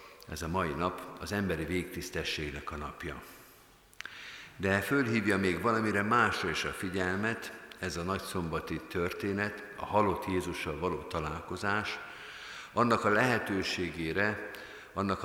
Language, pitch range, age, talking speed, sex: Hungarian, 85-105 Hz, 50-69, 120 wpm, male